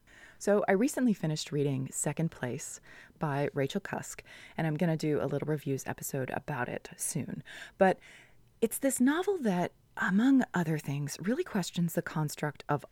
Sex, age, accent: female, 30-49, American